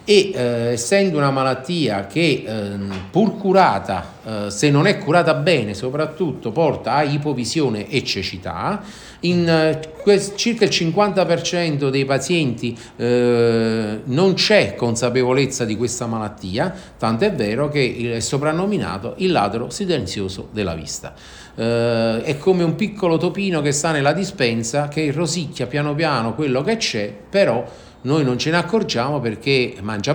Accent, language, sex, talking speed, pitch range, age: native, Italian, male, 140 wpm, 115-170 Hz, 50-69